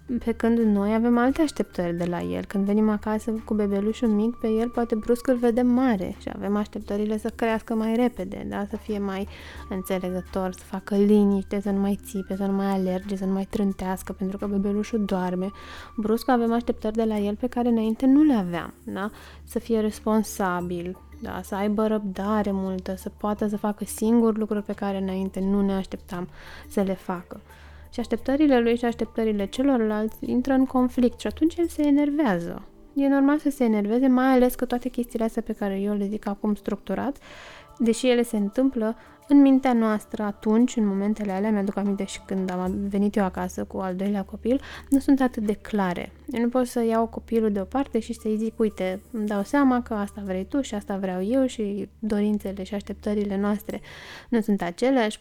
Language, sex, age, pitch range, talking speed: Romanian, female, 20-39, 195-235 Hz, 195 wpm